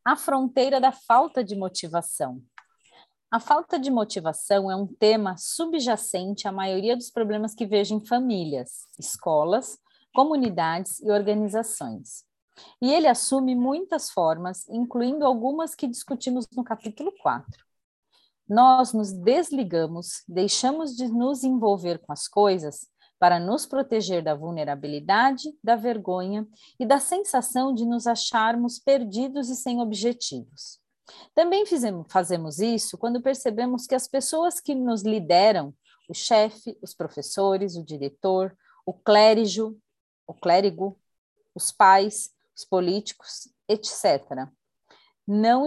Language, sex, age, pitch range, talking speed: Portuguese, female, 40-59, 190-255 Hz, 120 wpm